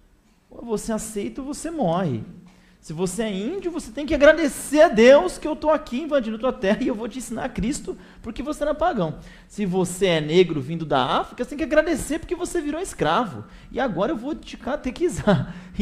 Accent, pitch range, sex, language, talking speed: Brazilian, 155-245 Hz, male, Portuguese, 210 wpm